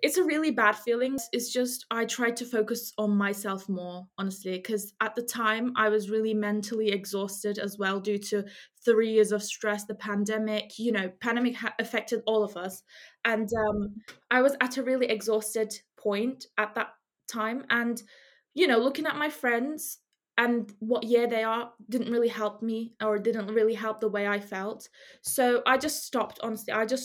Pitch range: 210-240 Hz